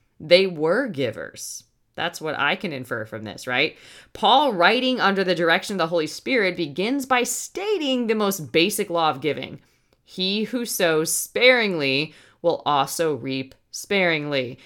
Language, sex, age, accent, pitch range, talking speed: English, female, 20-39, American, 140-200 Hz, 150 wpm